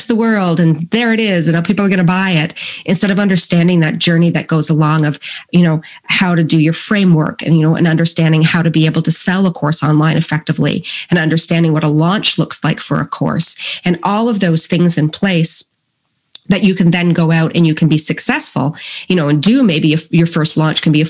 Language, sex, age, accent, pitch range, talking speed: English, female, 30-49, American, 155-185 Hz, 240 wpm